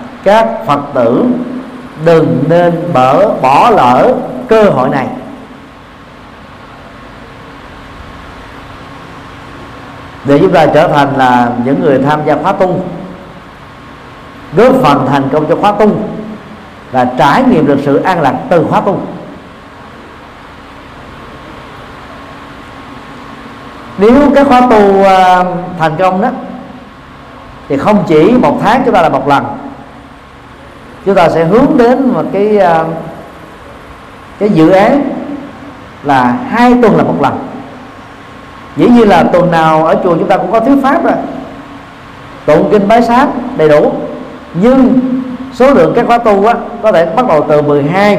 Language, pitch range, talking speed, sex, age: Vietnamese, 150-240 Hz, 130 wpm, male, 50-69